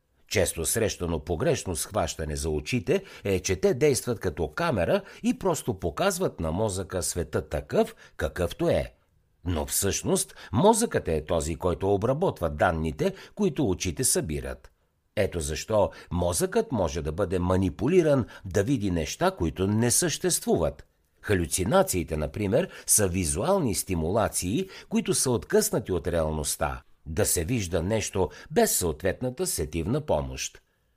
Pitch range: 85-140 Hz